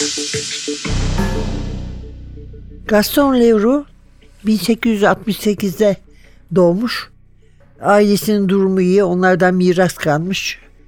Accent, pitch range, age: native, 175-225 Hz, 60-79